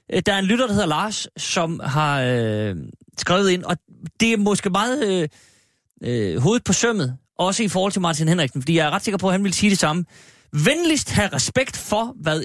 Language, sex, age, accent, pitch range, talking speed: Danish, male, 30-49, native, 125-185 Hz, 210 wpm